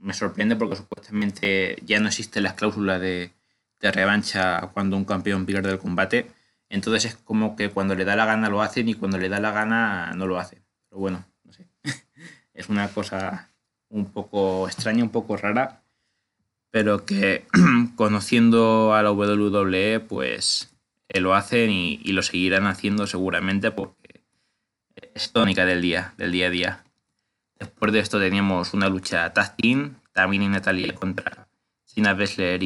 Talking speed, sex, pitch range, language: 165 wpm, male, 95-110 Hz, Spanish